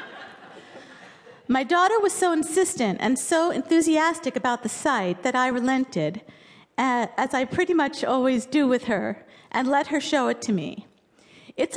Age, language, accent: 50-69, English, American